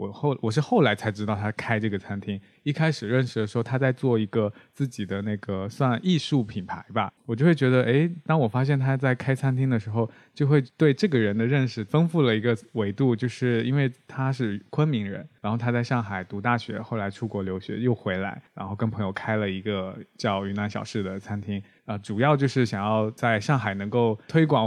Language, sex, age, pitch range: Chinese, male, 20-39, 105-130 Hz